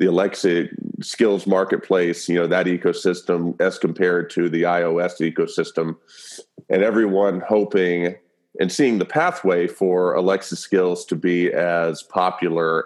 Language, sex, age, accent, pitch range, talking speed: English, male, 30-49, American, 90-115 Hz, 130 wpm